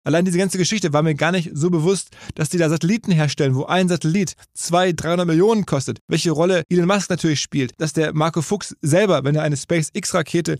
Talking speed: 210 wpm